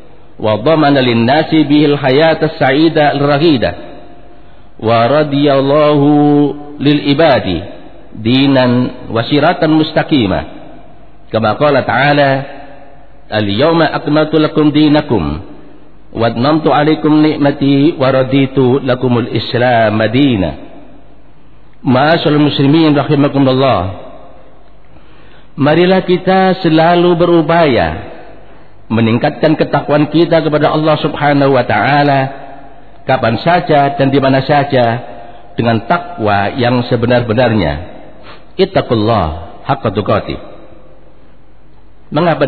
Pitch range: 125-155 Hz